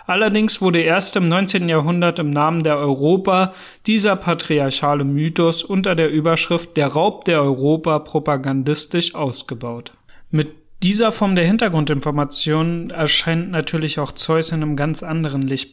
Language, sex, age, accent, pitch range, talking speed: German, male, 30-49, German, 145-180 Hz, 135 wpm